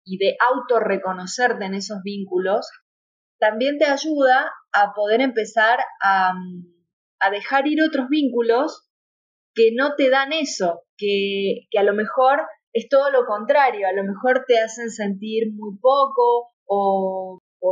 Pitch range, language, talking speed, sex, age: 200-245 Hz, Spanish, 140 wpm, female, 20-39